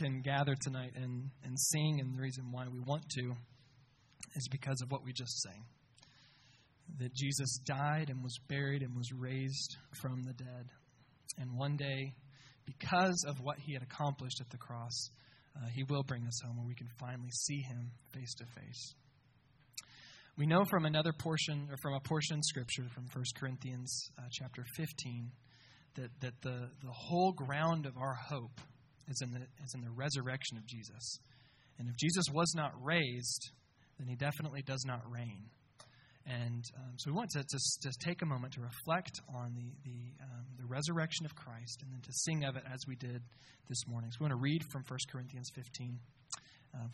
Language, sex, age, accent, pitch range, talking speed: English, male, 20-39, American, 125-145 Hz, 190 wpm